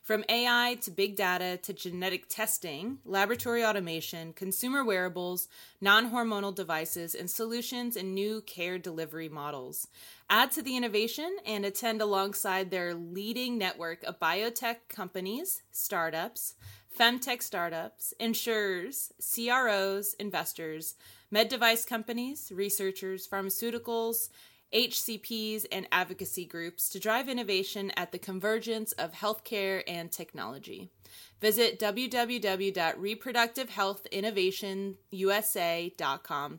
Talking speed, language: 100 wpm, English